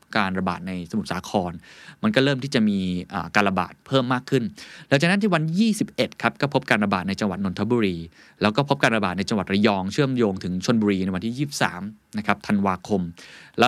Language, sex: Thai, male